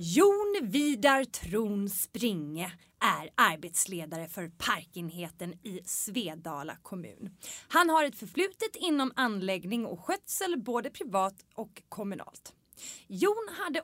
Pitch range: 180-295 Hz